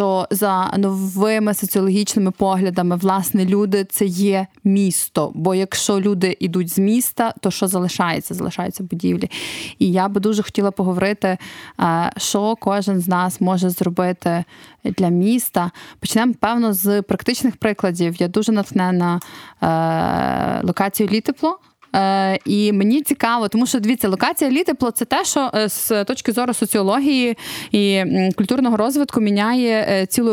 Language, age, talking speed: Ukrainian, 20-39, 135 wpm